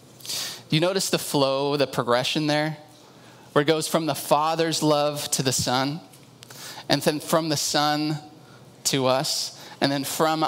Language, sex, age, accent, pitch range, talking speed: English, male, 30-49, American, 130-165 Hz, 155 wpm